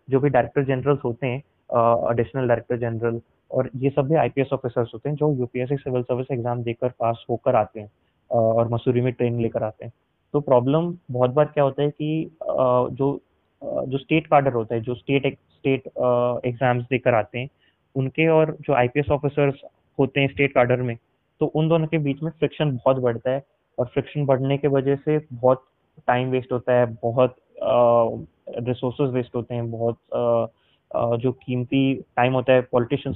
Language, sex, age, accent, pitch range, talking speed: Hindi, male, 20-39, native, 120-140 Hz, 165 wpm